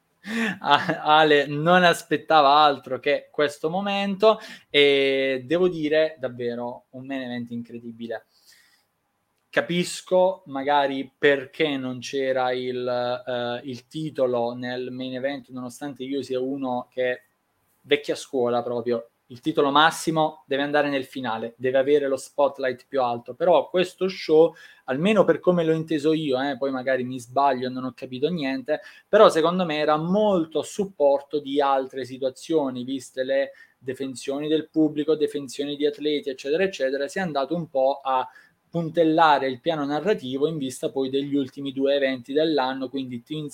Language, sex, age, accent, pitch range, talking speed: Italian, male, 20-39, native, 130-155 Hz, 145 wpm